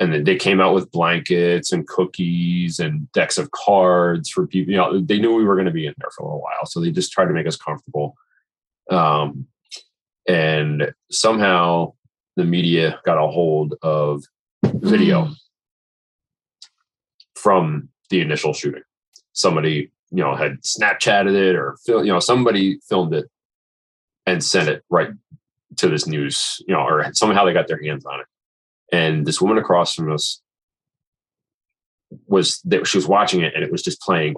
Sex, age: male, 30-49